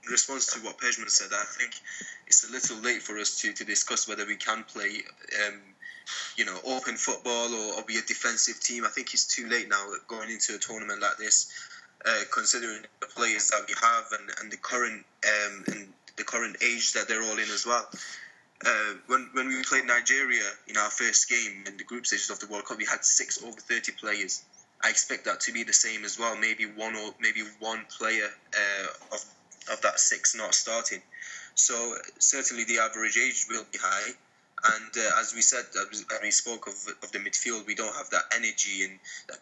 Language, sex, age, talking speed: English, male, 20-39, 210 wpm